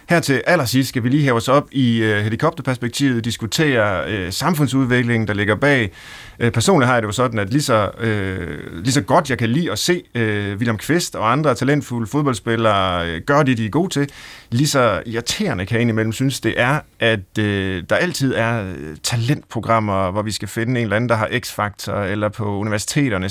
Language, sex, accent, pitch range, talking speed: Danish, male, native, 105-135 Hz, 200 wpm